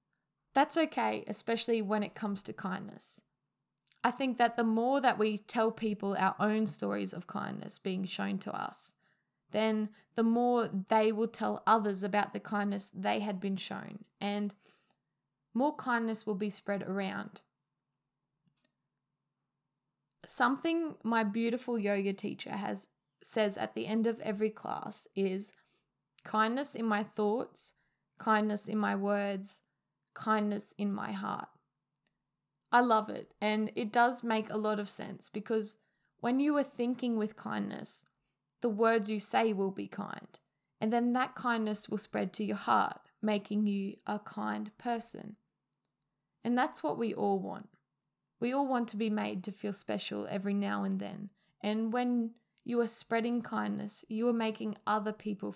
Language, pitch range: English, 195-230 Hz